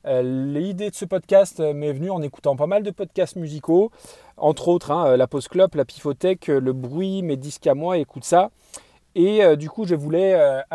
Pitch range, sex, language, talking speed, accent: 135-170 Hz, male, French, 205 wpm, French